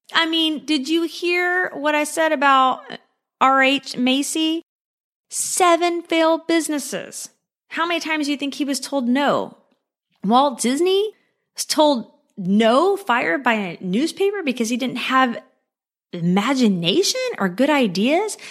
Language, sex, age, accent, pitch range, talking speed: English, female, 20-39, American, 200-275 Hz, 135 wpm